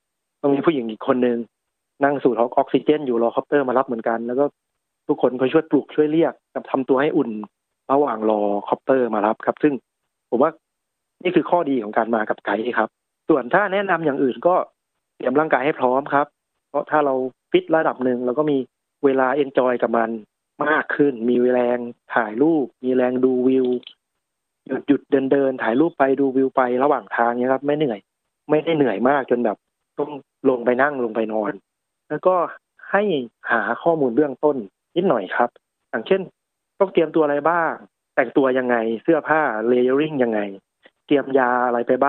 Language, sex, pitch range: Thai, male, 125-145 Hz